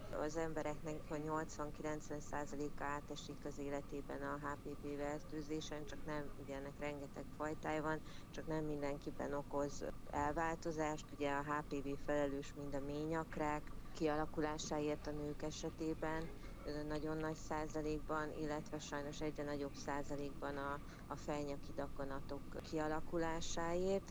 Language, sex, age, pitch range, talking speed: Hungarian, female, 30-49, 140-155 Hz, 110 wpm